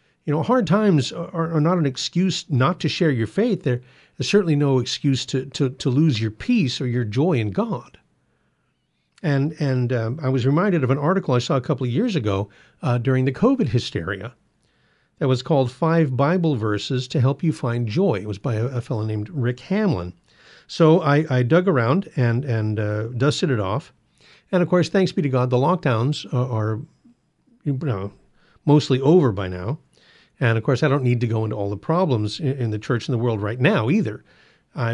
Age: 50-69